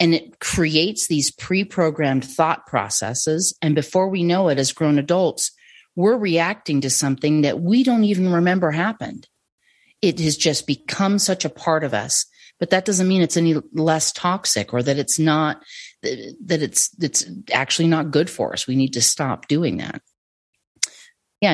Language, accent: English, American